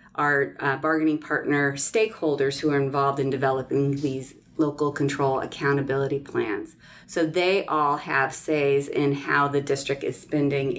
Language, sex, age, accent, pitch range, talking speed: English, female, 30-49, American, 135-155 Hz, 145 wpm